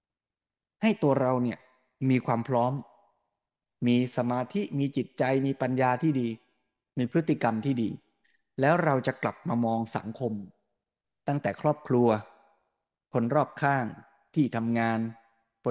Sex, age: male, 20-39